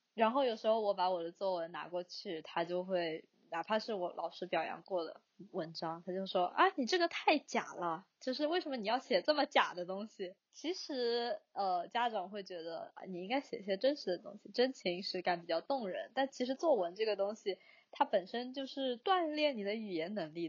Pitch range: 180-240 Hz